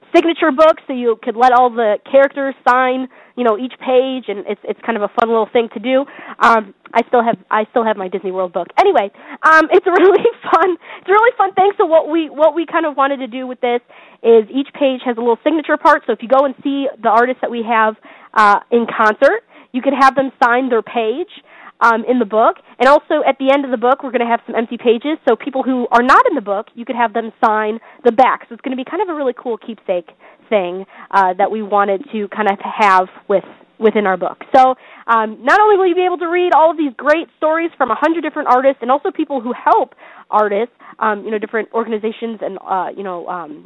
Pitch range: 220-285 Hz